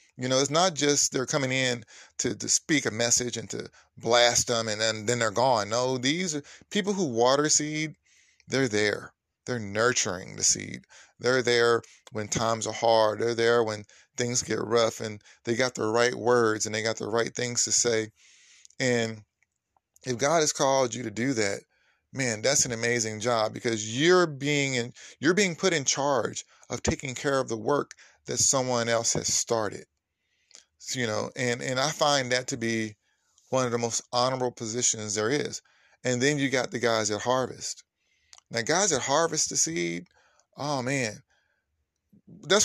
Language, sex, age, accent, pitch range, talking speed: English, male, 30-49, American, 115-140 Hz, 180 wpm